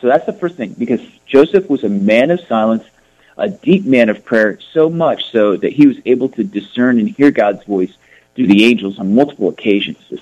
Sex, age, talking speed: male, 40-59, 215 wpm